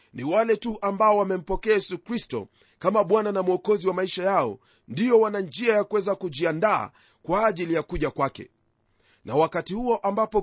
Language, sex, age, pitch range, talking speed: Swahili, male, 40-59, 170-220 Hz, 160 wpm